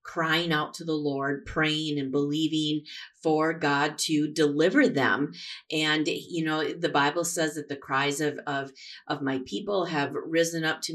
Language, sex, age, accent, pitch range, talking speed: English, female, 40-59, American, 140-160 Hz, 170 wpm